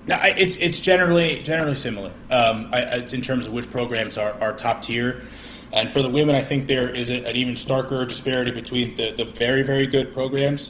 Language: English